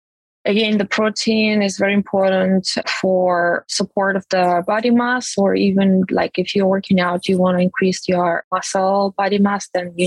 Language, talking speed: English, 175 wpm